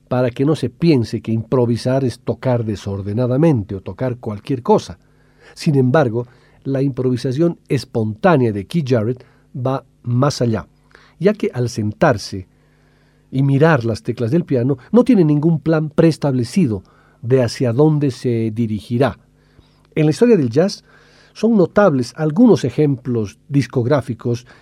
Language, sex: Spanish, male